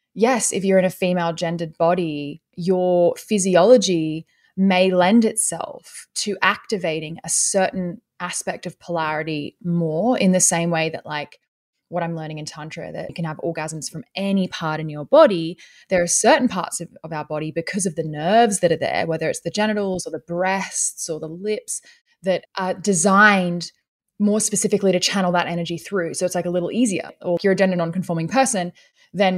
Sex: female